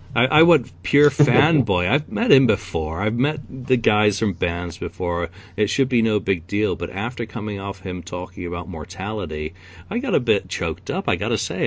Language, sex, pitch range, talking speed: English, male, 85-110 Hz, 205 wpm